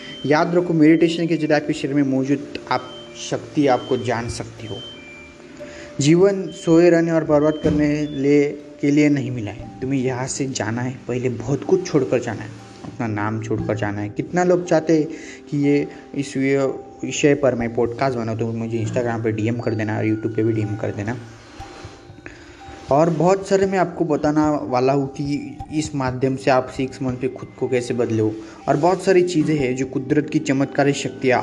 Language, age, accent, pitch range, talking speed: Hindi, 20-39, native, 115-155 Hz, 185 wpm